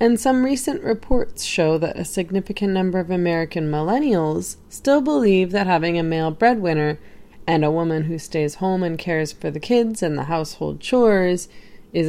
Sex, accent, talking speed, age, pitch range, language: female, American, 175 wpm, 20-39, 165-220 Hz, English